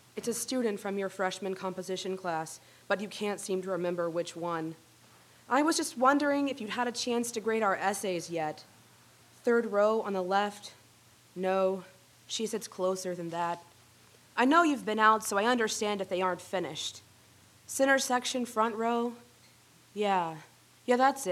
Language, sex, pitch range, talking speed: English, female, 180-220 Hz, 170 wpm